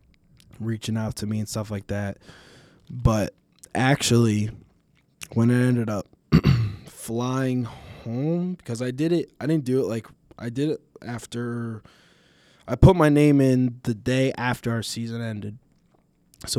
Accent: American